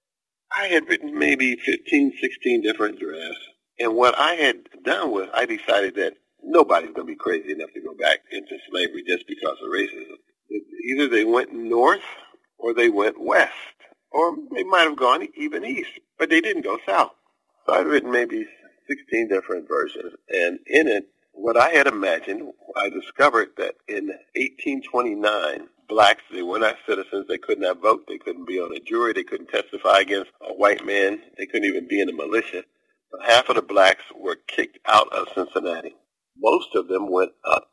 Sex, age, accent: male, 50-69, American